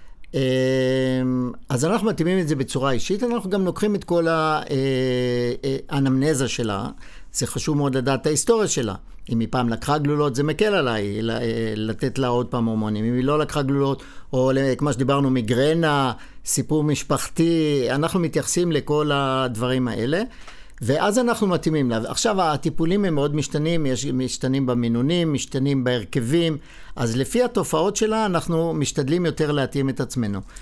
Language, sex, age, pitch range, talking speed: Hebrew, male, 50-69, 130-165 Hz, 145 wpm